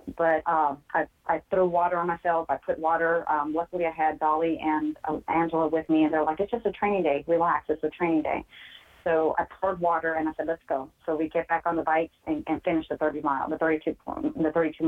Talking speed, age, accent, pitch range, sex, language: 240 wpm, 30-49, American, 150-165 Hz, female, English